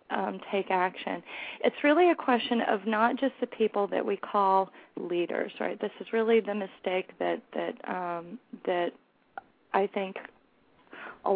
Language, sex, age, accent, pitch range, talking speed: English, female, 30-49, American, 185-225 Hz, 155 wpm